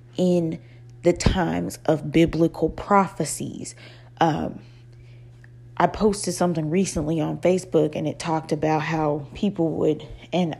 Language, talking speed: English, 120 wpm